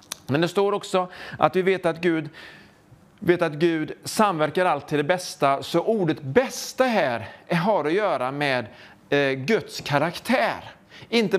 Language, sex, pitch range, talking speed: English, male, 145-205 Hz, 135 wpm